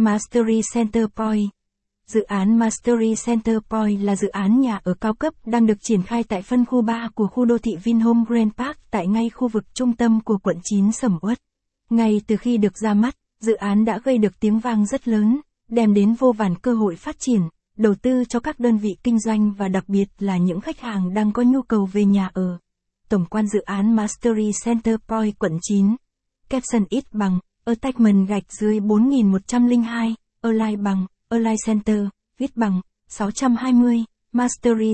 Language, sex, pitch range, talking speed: Vietnamese, female, 205-235 Hz, 190 wpm